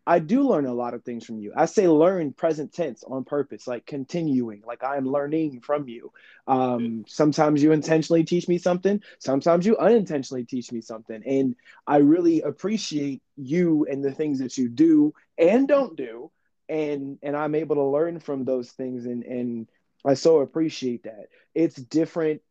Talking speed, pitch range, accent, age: 180 wpm, 130-160 Hz, American, 20-39